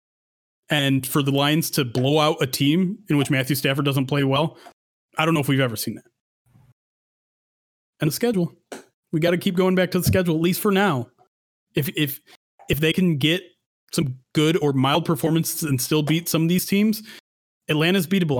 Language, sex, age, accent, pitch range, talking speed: English, male, 30-49, American, 135-175 Hz, 190 wpm